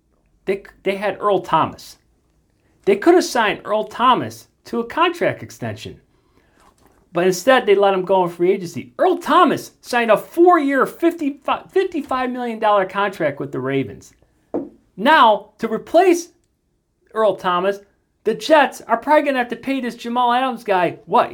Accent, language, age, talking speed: American, English, 40-59, 160 wpm